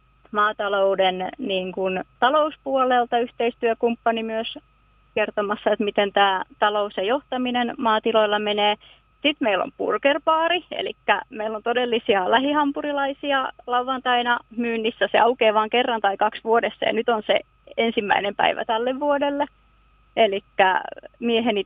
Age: 30-49